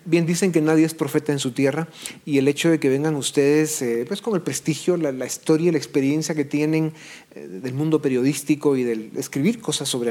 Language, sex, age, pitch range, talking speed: Spanish, male, 40-59, 125-155 Hz, 220 wpm